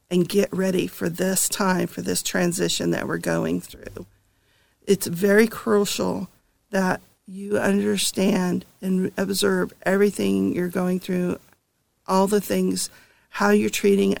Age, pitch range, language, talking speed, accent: 50-69, 190-225 Hz, English, 130 wpm, American